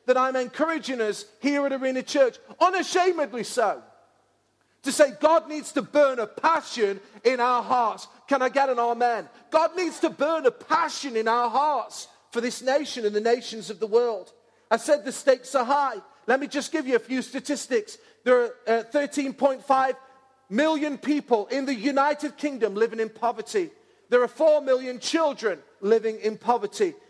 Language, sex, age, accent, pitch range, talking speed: English, male, 40-59, British, 220-275 Hz, 170 wpm